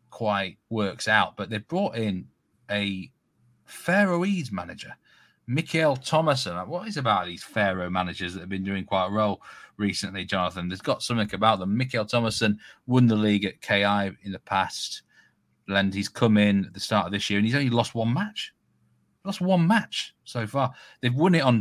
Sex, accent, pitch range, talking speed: male, British, 100-120 Hz, 185 wpm